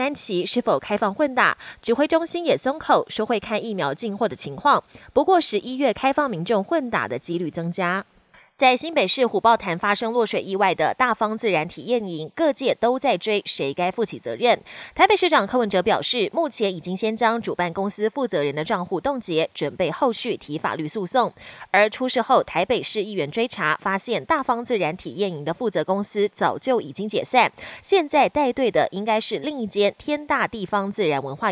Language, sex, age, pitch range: Chinese, female, 20-39, 185-255 Hz